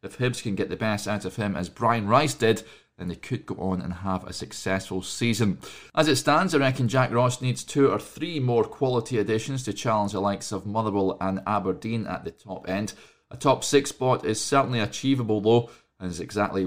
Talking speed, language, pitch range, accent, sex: 215 wpm, English, 100-130 Hz, British, male